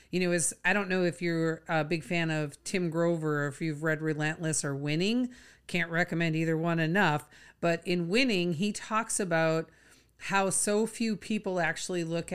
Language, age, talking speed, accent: English, 40-59, 185 wpm, American